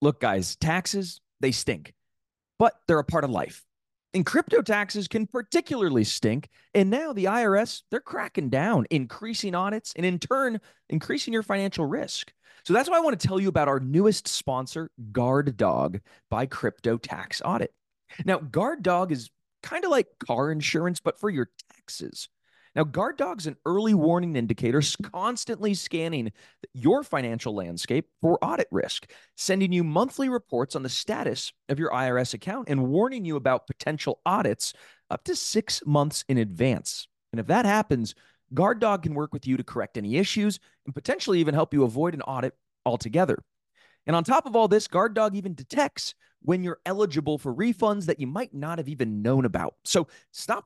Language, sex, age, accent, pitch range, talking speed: English, male, 30-49, American, 135-205 Hz, 175 wpm